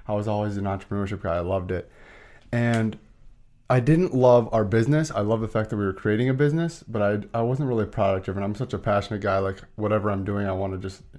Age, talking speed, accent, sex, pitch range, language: 30-49, 245 wpm, American, male, 100-115 Hz, English